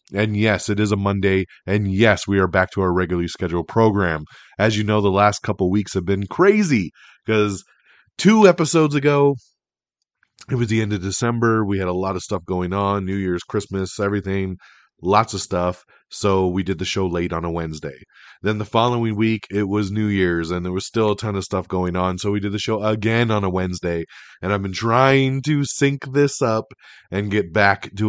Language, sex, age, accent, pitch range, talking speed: English, male, 30-49, American, 90-110 Hz, 210 wpm